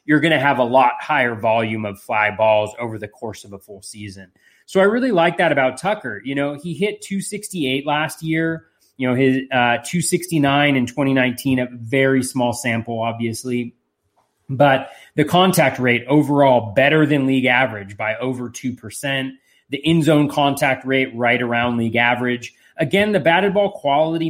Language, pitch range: English, 120-150 Hz